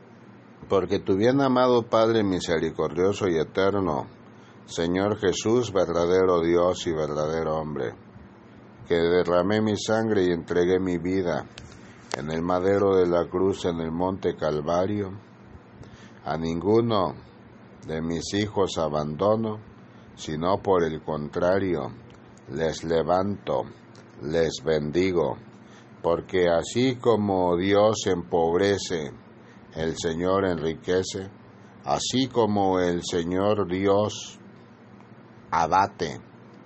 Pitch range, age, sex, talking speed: 85-105 Hz, 60-79, male, 100 wpm